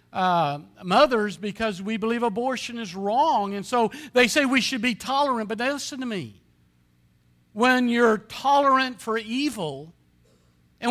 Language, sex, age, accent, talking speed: English, male, 50-69, American, 150 wpm